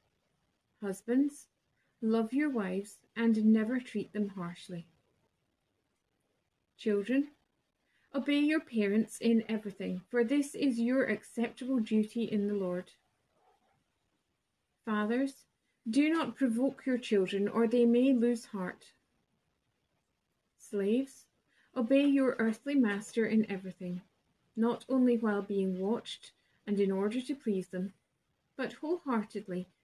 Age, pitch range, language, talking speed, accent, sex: 30-49, 205-250 Hz, English, 110 wpm, British, female